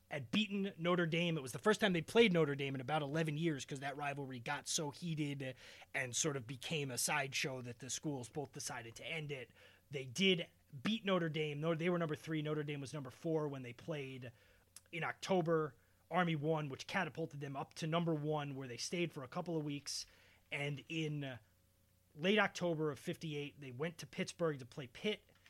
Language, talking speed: English, 200 wpm